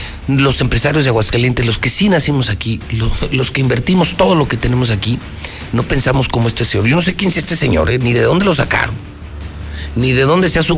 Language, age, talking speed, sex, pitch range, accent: Spanish, 50-69, 230 wpm, male, 95-140 Hz, Mexican